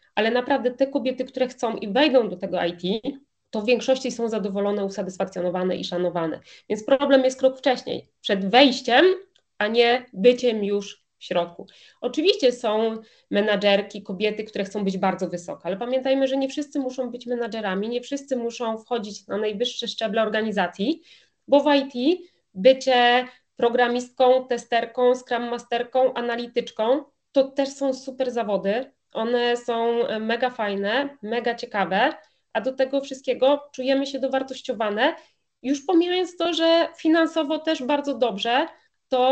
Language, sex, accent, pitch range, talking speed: Polish, female, native, 215-270 Hz, 140 wpm